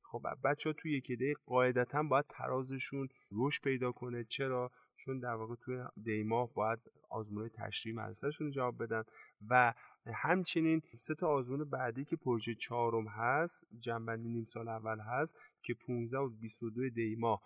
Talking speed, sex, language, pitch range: 150 wpm, male, Persian, 110-135 Hz